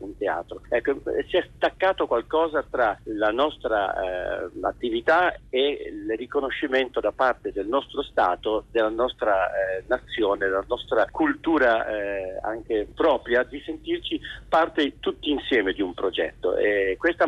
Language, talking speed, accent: Italian, 140 wpm, native